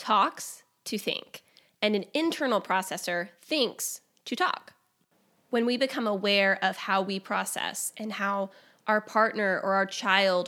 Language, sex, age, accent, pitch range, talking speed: English, female, 20-39, American, 190-230 Hz, 145 wpm